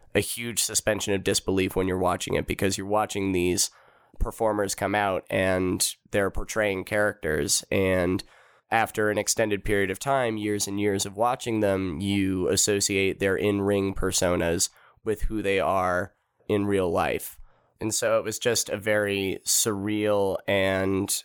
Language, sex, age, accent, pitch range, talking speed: English, male, 20-39, American, 95-105 Hz, 155 wpm